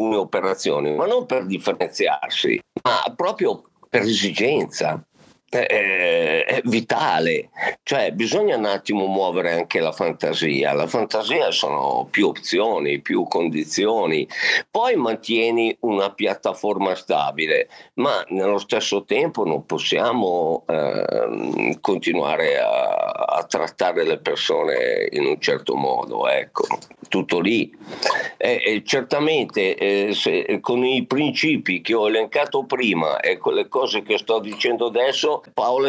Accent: native